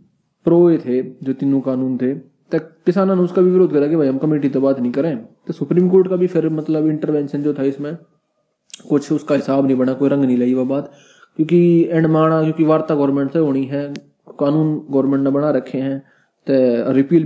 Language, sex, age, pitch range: Hindi, male, 20-39, 135-155 Hz